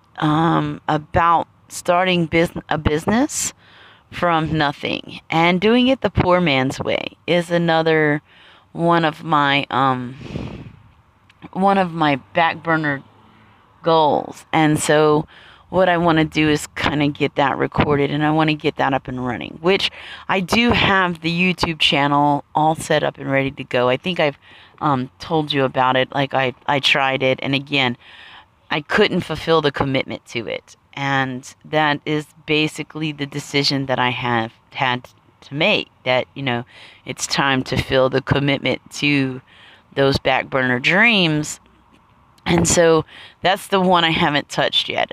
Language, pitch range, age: English, 130-165 Hz, 30-49